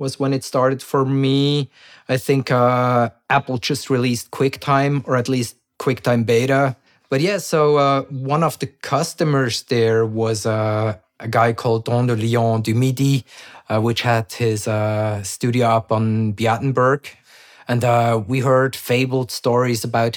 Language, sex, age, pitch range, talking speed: English, male, 30-49, 110-130 Hz, 160 wpm